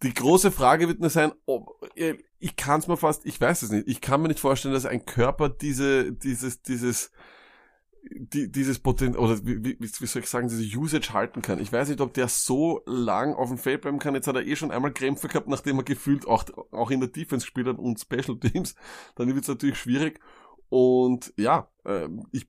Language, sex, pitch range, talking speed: German, male, 125-155 Hz, 215 wpm